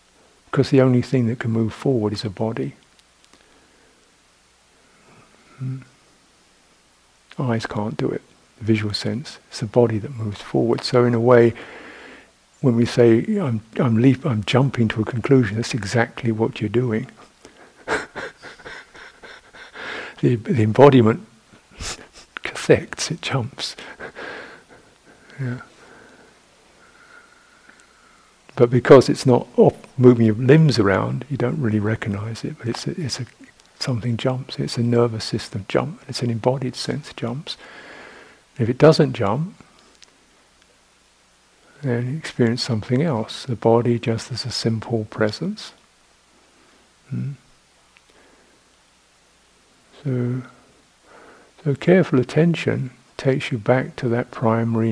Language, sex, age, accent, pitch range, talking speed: English, male, 60-79, British, 115-135 Hz, 115 wpm